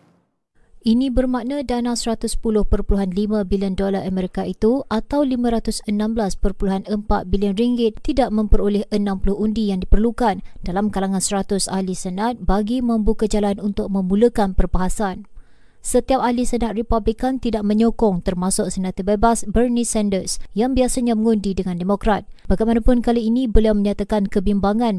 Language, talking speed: Malay, 120 wpm